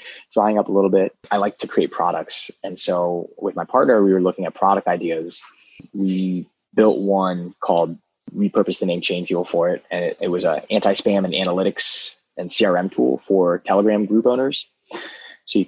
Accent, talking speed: American, 190 wpm